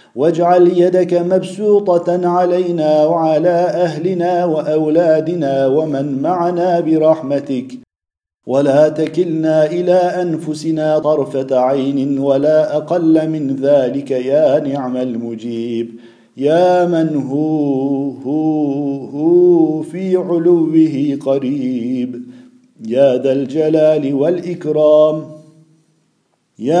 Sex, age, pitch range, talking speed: male, 50-69, 140-175 Hz, 80 wpm